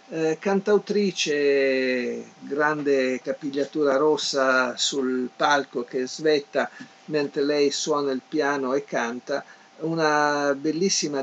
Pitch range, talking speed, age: 130-160 Hz, 95 wpm, 50-69